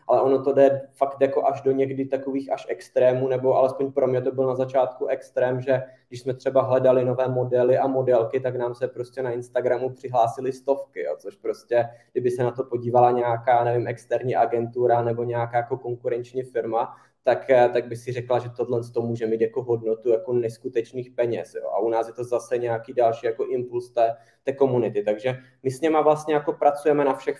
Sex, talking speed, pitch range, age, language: male, 205 wpm, 115-135 Hz, 20-39, Czech